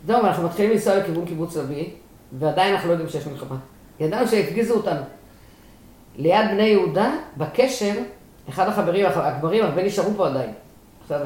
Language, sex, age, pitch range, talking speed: Hebrew, female, 40-59, 155-220 Hz, 150 wpm